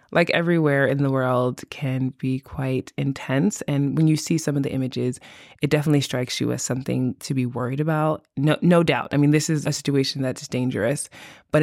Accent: American